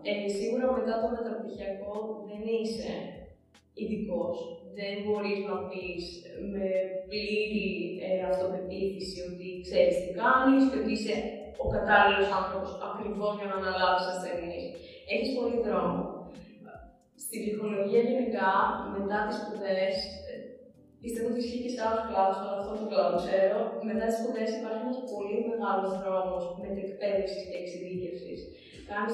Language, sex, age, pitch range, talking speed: Greek, female, 20-39, 190-235 Hz, 130 wpm